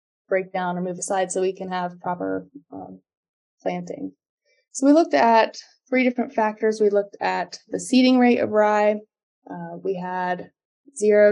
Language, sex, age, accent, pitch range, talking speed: English, female, 20-39, American, 190-220 Hz, 165 wpm